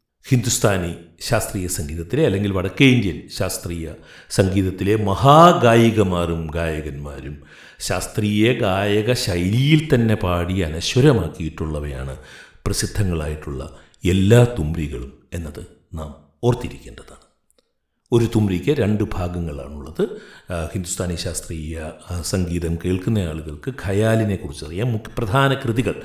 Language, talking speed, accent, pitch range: Malayalam, 80 wpm, native, 80-110 Hz